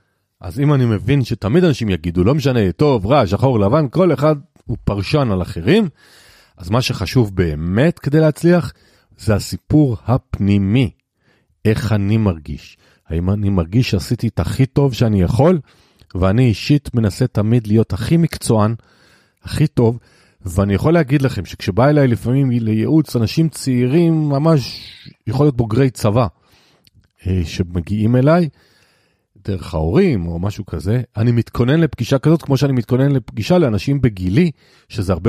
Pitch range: 100-135 Hz